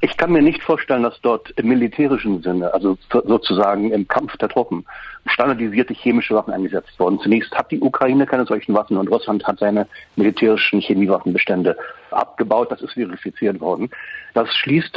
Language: German